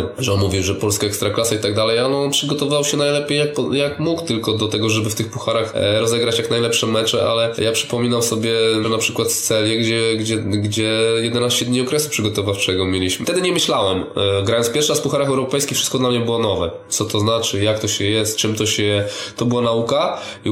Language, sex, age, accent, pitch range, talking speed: Polish, male, 20-39, native, 100-120 Hz, 220 wpm